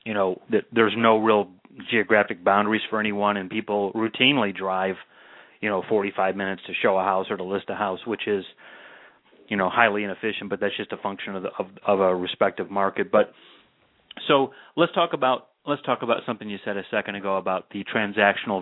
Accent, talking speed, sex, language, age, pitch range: American, 200 wpm, male, English, 30-49, 100-115 Hz